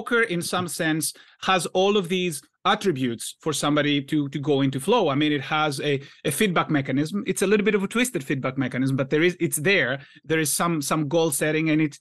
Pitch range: 145-175 Hz